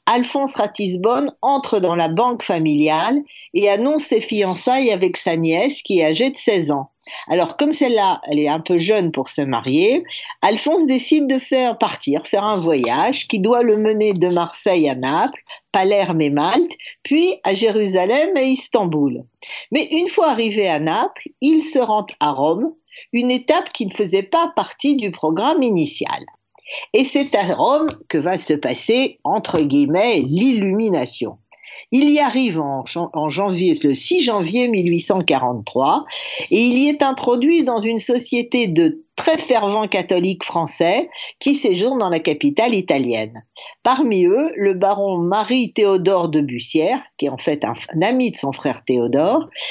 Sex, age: female, 50-69